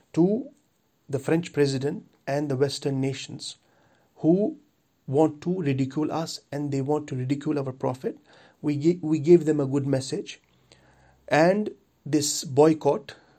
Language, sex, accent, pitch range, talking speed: English, male, Indian, 140-175 Hz, 140 wpm